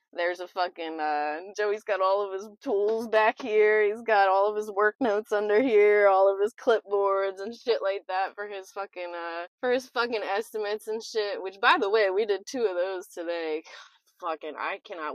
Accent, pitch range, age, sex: American, 165-215 Hz, 20-39, female